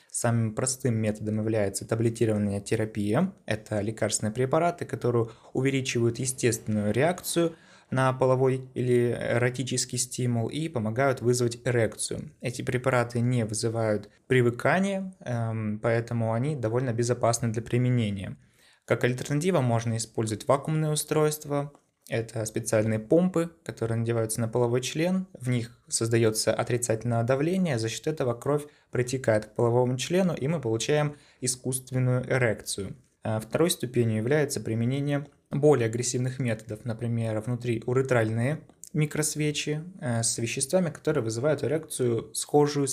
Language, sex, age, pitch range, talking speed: Russian, male, 20-39, 115-140 Hz, 115 wpm